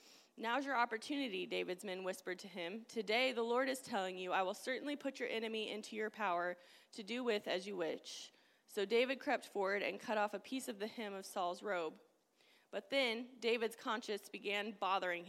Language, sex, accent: English, female, American